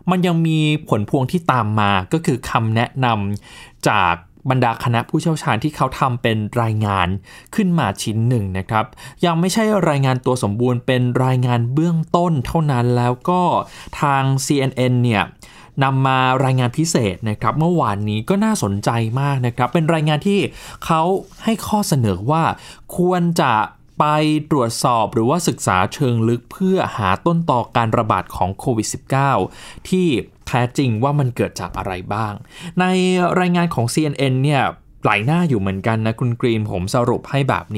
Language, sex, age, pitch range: Thai, male, 20-39, 115-160 Hz